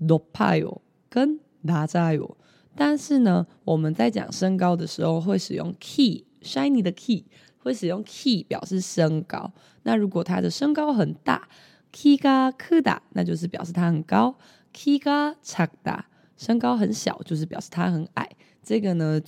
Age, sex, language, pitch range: 20-39, female, Chinese, 165-250 Hz